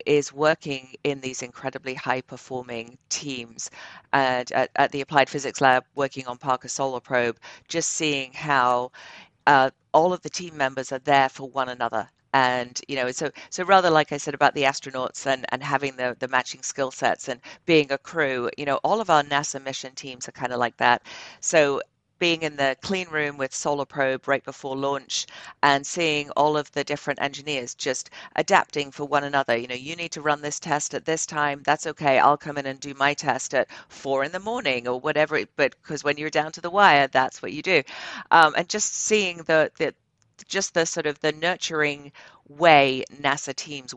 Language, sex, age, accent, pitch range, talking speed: English, female, 50-69, British, 135-150 Hz, 205 wpm